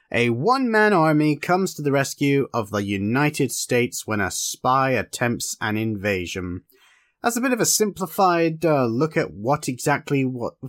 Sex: male